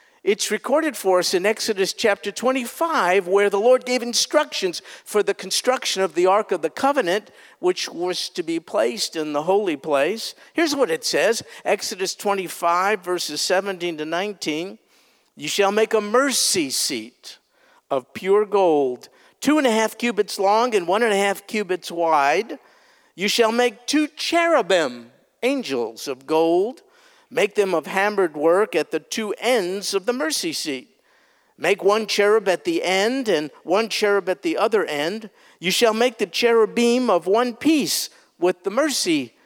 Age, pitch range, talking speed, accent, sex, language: 50-69, 180-245 Hz, 165 wpm, American, male, English